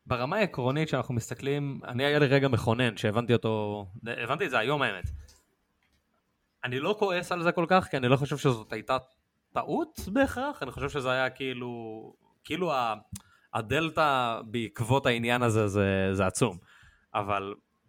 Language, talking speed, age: Hebrew, 150 wpm, 20-39